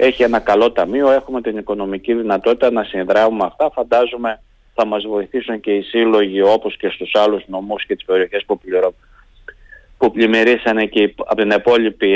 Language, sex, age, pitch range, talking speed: Greek, male, 30-49, 110-145 Hz, 170 wpm